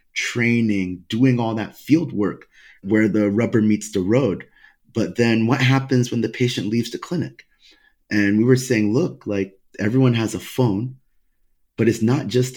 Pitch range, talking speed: 100-125 Hz, 170 wpm